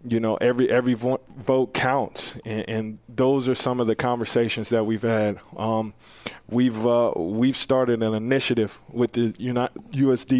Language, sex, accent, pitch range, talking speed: English, male, American, 110-125 Hz, 155 wpm